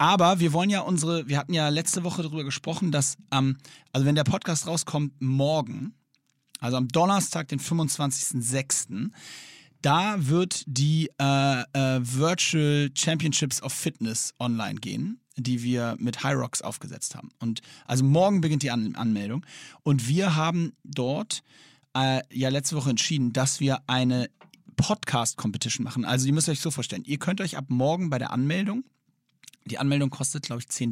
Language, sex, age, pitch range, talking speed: German, male, 40-59, 130-165 Hz, 165 wpm